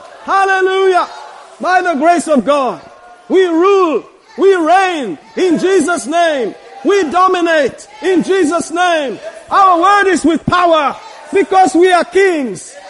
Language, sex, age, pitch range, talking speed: English, male, 50-69, 255-335 Hz, 125 wpm